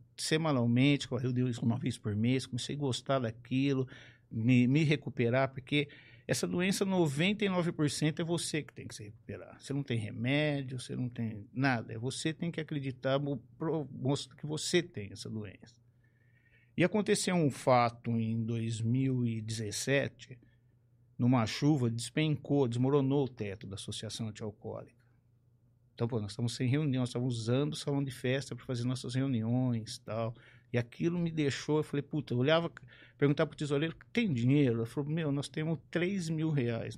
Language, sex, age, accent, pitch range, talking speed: Portuguese, male, 50-69, Brazilian, 120-145 Hz, 160 wpm